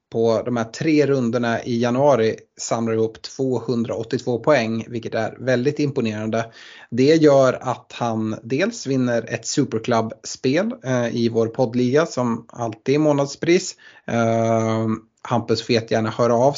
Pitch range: 115-140 Hz